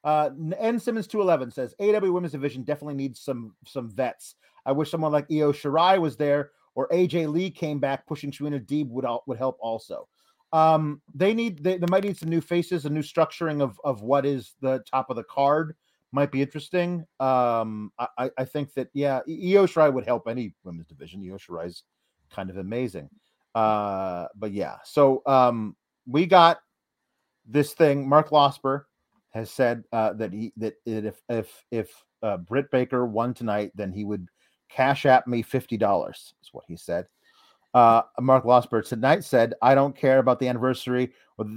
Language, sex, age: English, male, 30-49